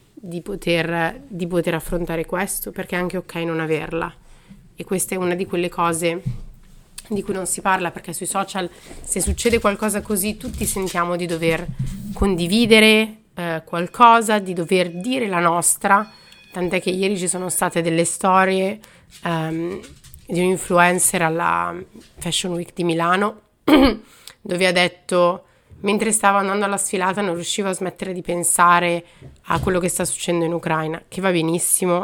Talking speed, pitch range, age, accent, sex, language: 155 wpm, 165-190 Hz, 30-49, native, female, Italian